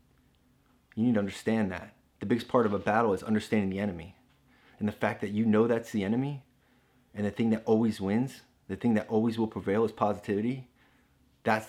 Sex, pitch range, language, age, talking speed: male, 100-120 Hz, English, 30-49, 200 wpm